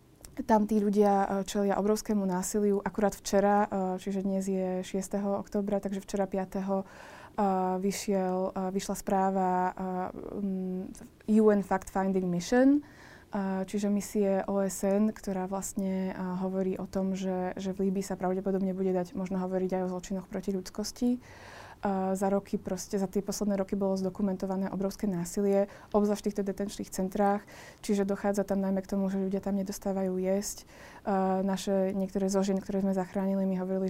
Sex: female